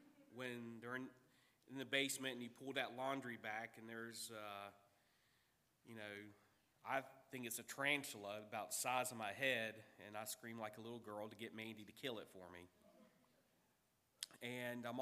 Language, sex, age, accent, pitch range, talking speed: English, male, 40-59, American, 105-140 Hz, 180 wpm